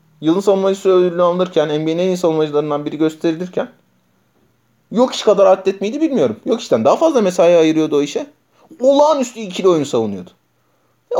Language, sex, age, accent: Turkish, male, 30-49, native